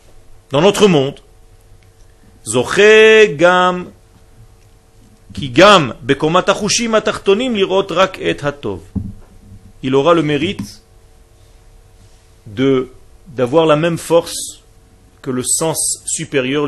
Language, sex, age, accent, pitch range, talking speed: French, male, 40-59, French, 100-145 Hz, 55 wpm